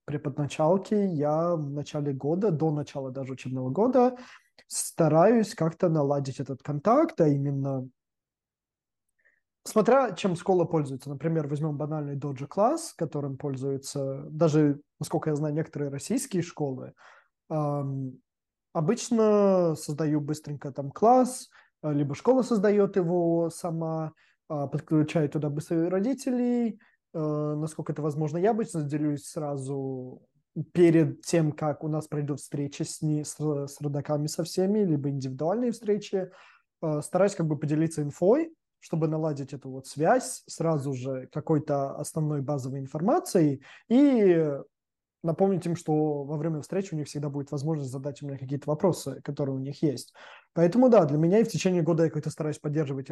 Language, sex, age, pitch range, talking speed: Russian, male, 20-39, 145-175 Hz, 135 wpm